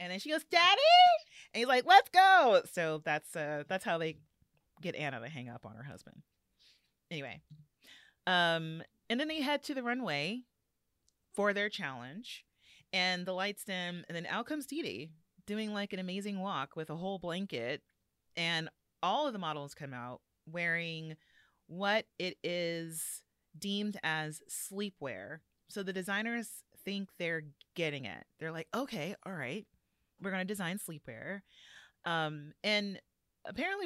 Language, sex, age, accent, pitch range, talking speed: English, female, 30-49, American, 160-215 Hz, 155 wpm